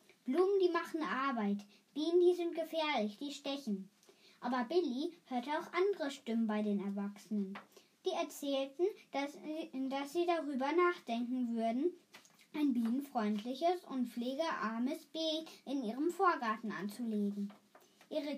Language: German